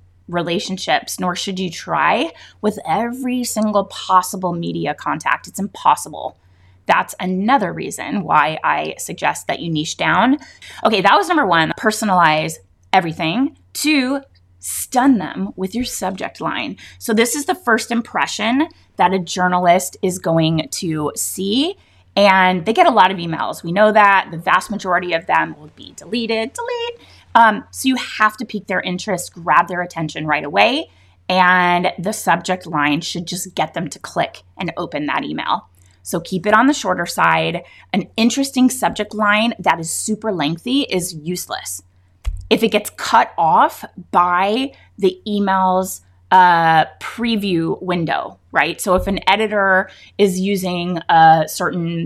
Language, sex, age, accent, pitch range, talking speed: English, female, 20-39, American, 165-215 Hz, 155 wpm